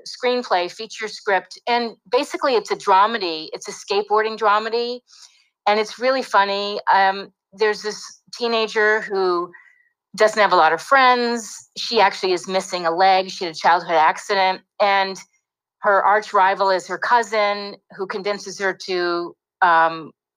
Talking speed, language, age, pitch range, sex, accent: 145 wpm, English, 30-49, 185-225 Hz, female, American